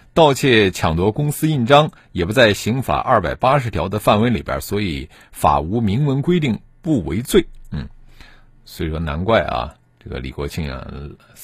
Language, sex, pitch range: Chinese, male, 100-155 Hz